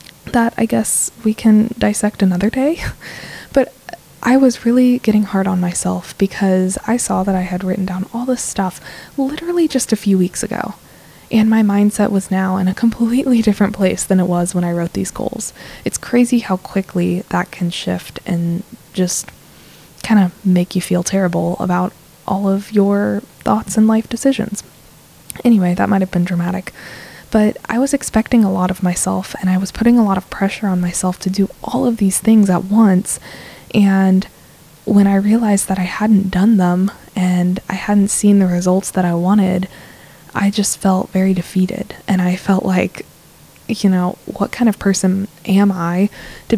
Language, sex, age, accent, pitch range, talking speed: English, female, 20-39, American, 185-220 Hz, 185 wpm